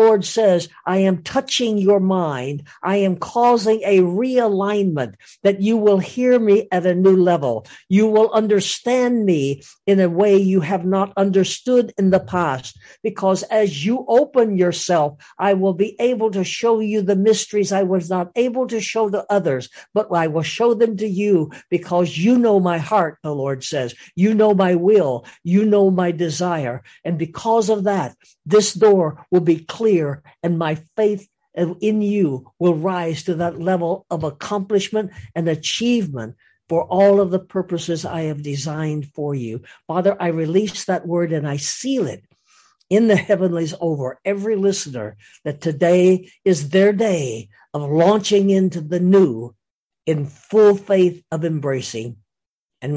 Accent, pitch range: American, 160-205 Hz